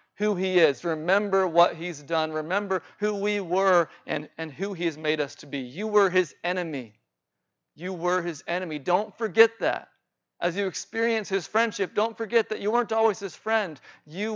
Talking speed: 190 wpm